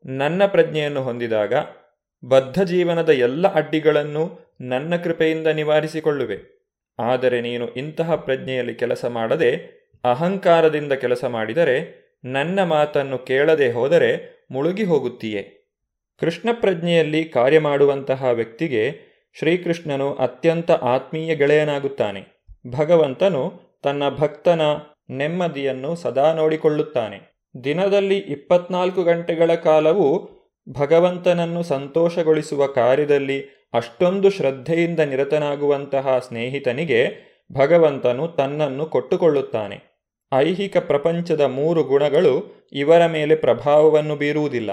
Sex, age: male, 30-49